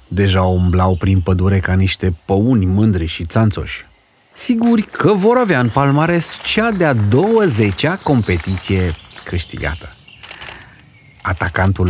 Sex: male